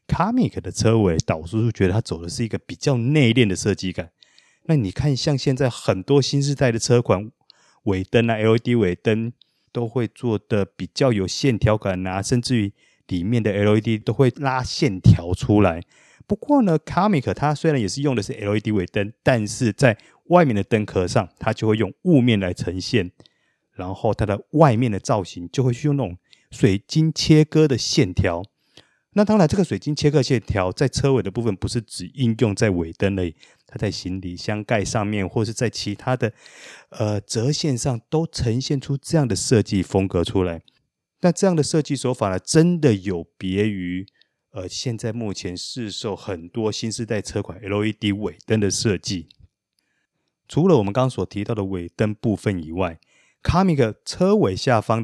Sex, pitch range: male, 100-135 Hz